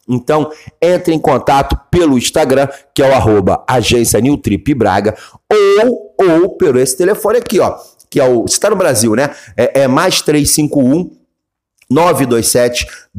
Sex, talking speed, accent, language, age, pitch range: male, 145 wpm, Brazilian, Portuguese, 40-59, 130-185 Hz